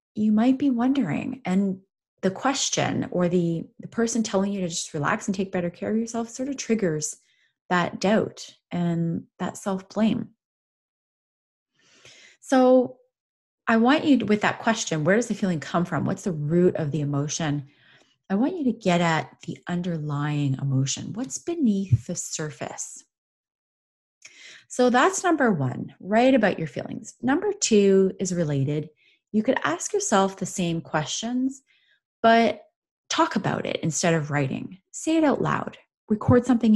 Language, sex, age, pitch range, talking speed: English, female, 30-49, 160-230 Hz, 155 wpm